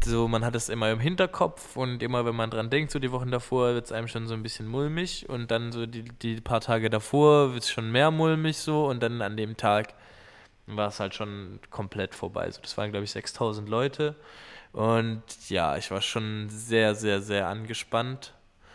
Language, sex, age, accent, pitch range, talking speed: German, male, 20-39, German, 105-130 Hz, 210 wpm